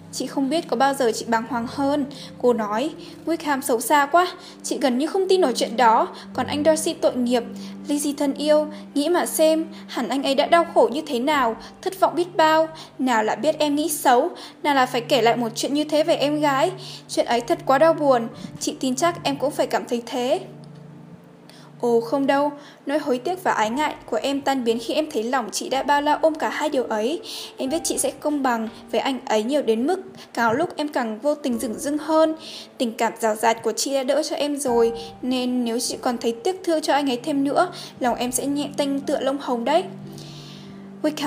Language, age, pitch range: Vietnamese, 10-29, 235-305 Hz